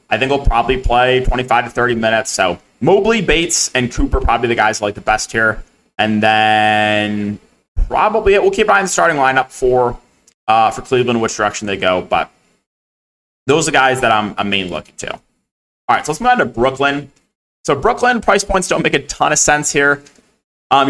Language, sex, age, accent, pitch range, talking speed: English, male, 20-39, American, 110-145 Hz, 210 wpm